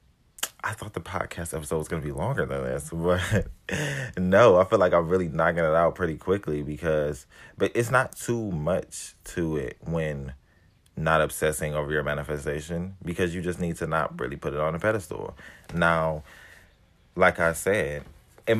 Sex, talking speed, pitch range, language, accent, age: male, 175 wpm, 75-90 Hz, English, American, 30-49